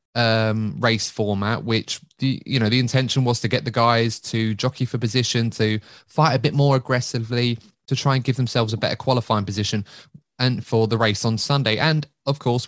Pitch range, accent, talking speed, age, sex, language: 110-130 Hz, British, 200 wpm, 20-39, male, English